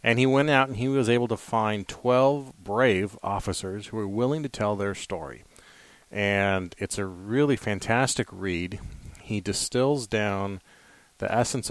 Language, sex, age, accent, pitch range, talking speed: English, male, 30-49, American, 100-125 Hz, 160 wpm